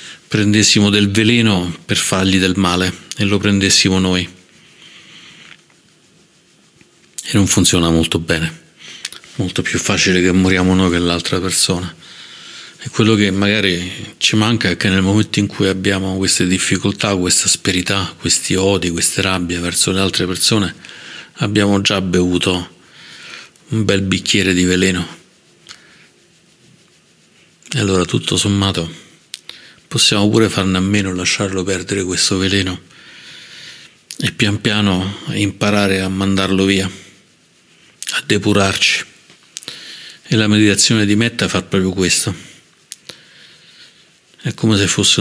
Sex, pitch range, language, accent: male, 90-100 Hz, Italian, native